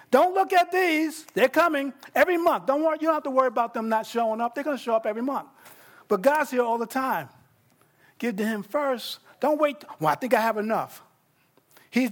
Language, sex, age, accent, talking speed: English, male, 50-69, American, 230 wpm